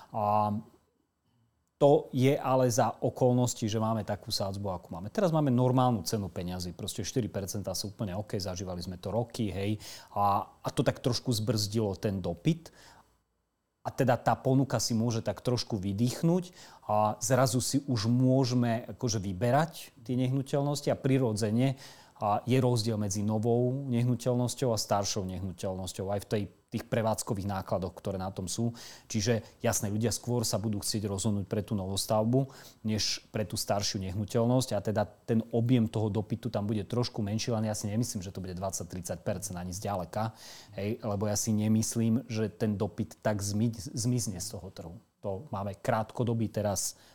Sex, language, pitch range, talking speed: male, Slovak, 100-120 Hz, 160 wpm